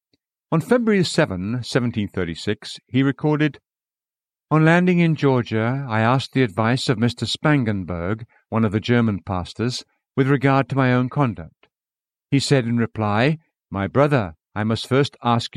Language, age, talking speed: English, 60-79, 145 wpm